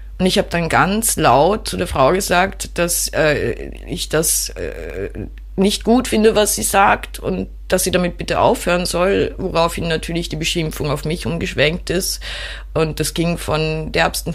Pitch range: 140-165 Hz